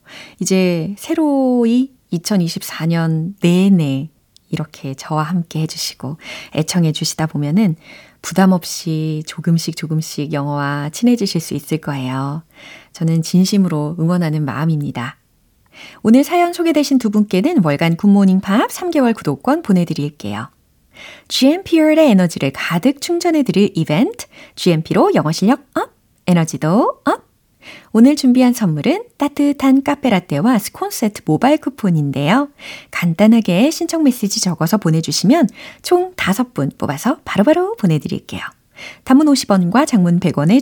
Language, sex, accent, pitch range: Korean, female, native, 165-270 Hz